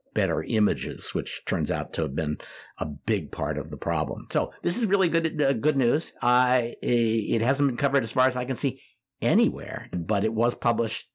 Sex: male